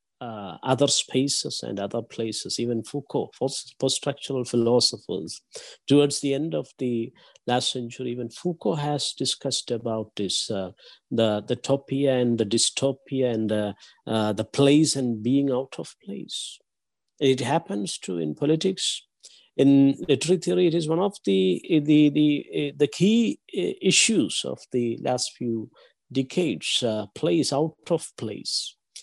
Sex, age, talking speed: male, 50-69, 145 wpm